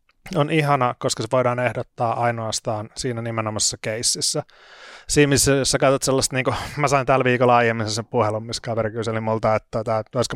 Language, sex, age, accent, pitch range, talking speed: Finnish, male, 30-49, native, 110-130 Hz, 180 wpm